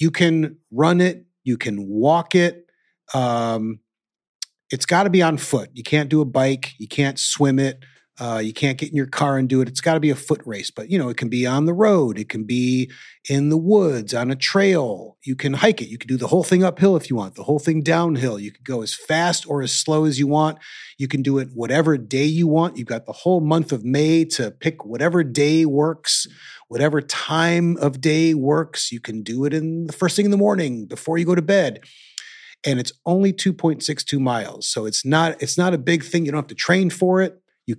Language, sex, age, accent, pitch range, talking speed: English, male, 30-49, American, 130-165 Hz, 240 wpm